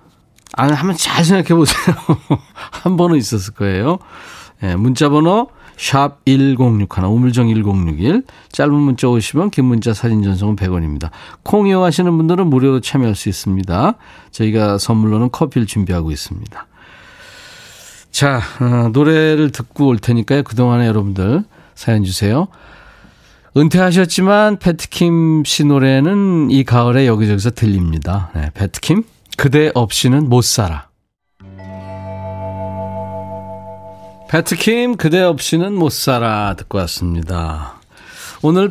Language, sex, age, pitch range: Korean, male, 40-59, 100-150 Hz